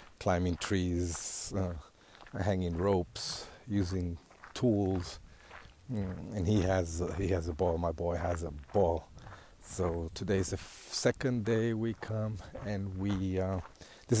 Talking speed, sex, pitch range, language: 145 wpm, male, 90-110 Hz, English